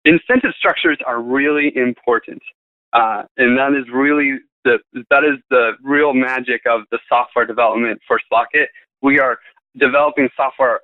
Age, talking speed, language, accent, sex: 20-39, 145 wpm, English, American, male